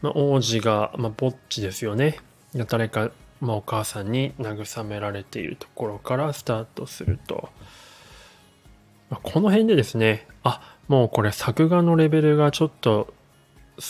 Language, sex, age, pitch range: Japanese, male, 20-39, 105-145 Hz